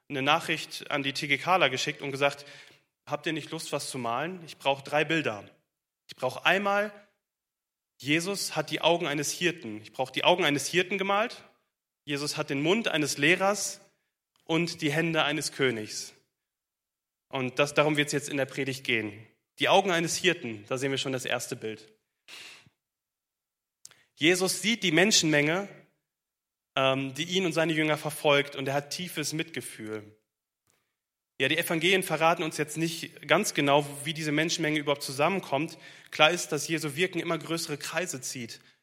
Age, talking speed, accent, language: 30-49, 165 wpm, German, German